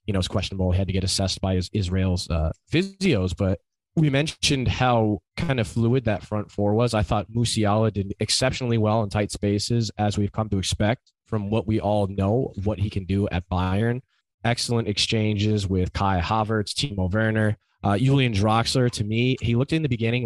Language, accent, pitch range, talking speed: English, American, 100-120 Hz, 195 wpm